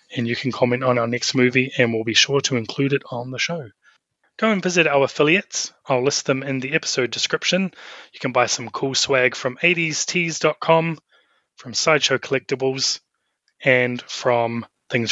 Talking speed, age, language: 175 wpm, 20-39, English